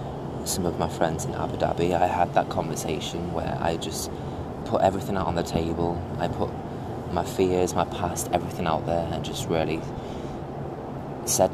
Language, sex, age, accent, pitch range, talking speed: English, male, 20-39, British, 80-90 Hz, 170 wpm